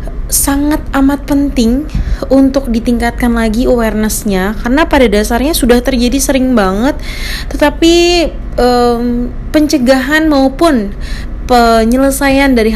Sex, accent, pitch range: female, native, 205-270 Hz